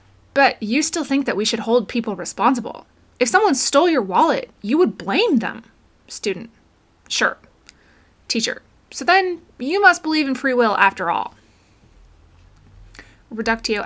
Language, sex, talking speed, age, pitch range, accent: English, female, 145 wpm, 20-39, 210-290 Hz, American